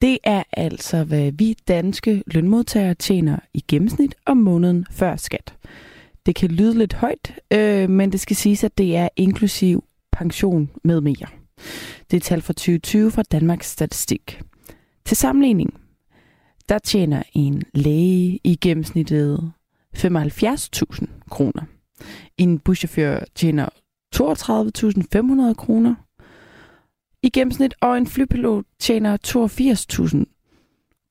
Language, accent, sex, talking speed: Danish, native, female, 120 wpm